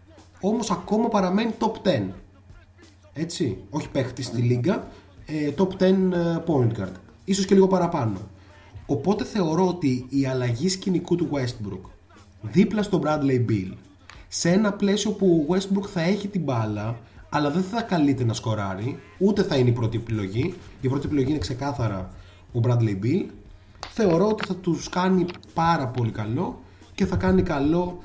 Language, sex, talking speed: Greek, male, 155 wpm